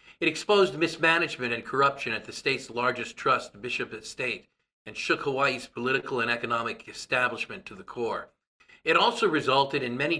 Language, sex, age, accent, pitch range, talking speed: English, male, 50-69, American, 120-140 Hz, 165 wpm